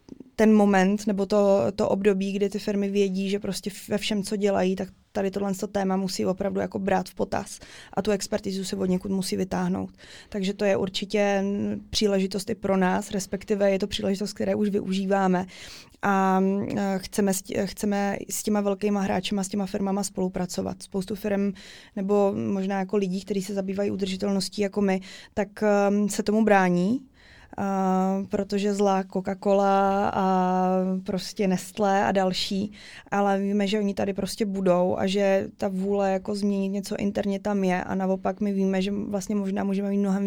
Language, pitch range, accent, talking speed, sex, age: Czech, 190-205 Hz, native, 170 wpm, female, 20-39